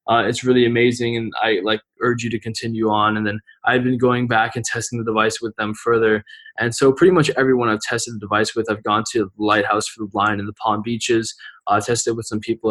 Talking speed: 250 wpm